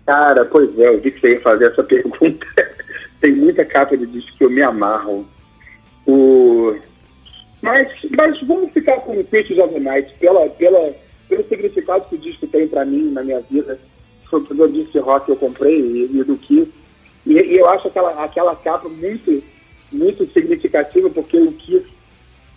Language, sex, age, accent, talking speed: Portuguese, male, 40-59, Brazilian, 175 wpm